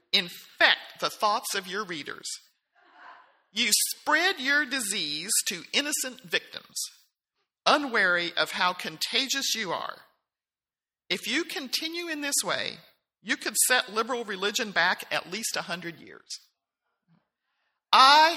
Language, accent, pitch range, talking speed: English, American, 180-250 Hz, 120 wpm